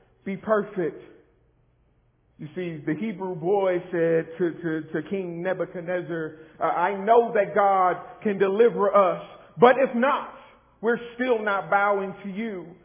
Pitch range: 210-250 Hz